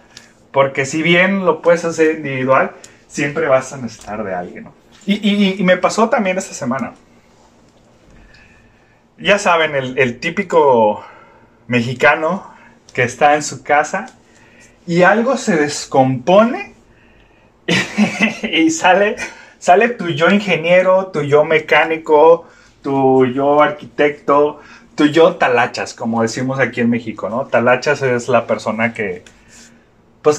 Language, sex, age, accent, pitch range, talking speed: Spanish, male, 30-49, Mexican, 125-185 Hz, 125 wpm